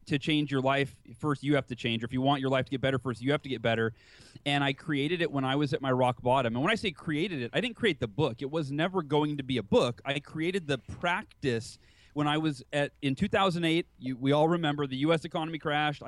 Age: 30-49